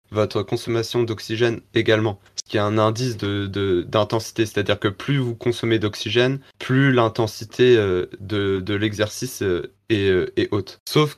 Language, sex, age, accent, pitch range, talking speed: French, male, 20-39, French, 105-125 Hz, 160 wpm